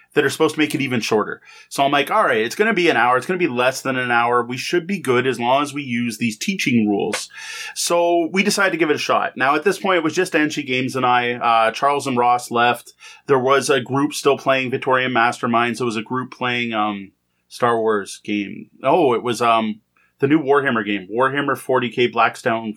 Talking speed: 235 wpm